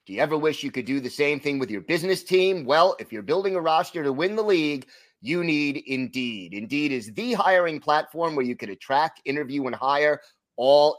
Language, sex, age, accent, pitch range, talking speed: English, male, 30-49, American, 130-170 Hz, 220 wpm